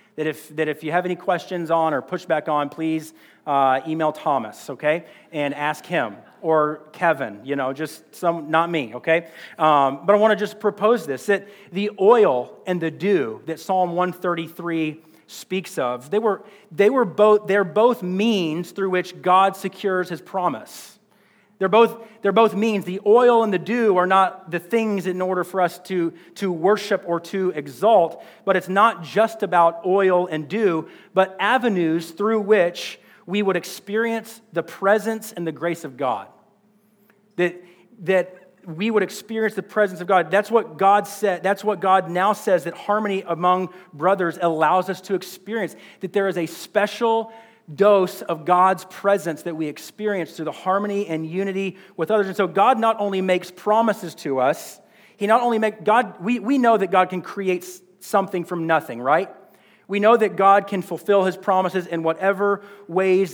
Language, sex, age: English, male, 40-59